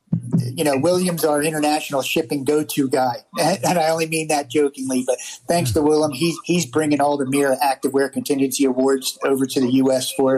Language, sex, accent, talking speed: English, male, American, 190 wpm